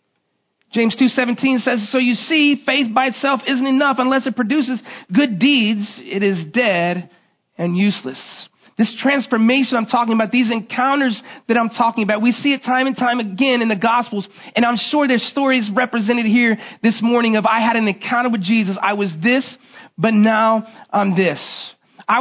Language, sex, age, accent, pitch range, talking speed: English, male, 30-49, American, 230-295 Hz, 180 wpm